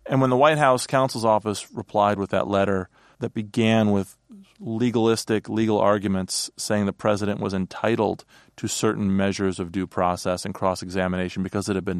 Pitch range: 100-115 Hz